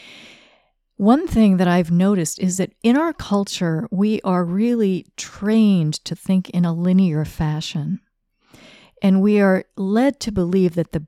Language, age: English, 50-69